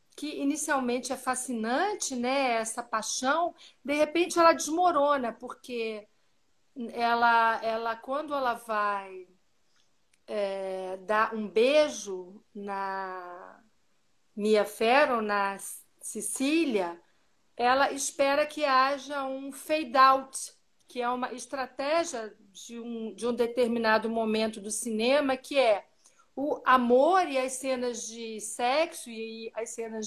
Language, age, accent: Portuguese, 50-69, Brazilian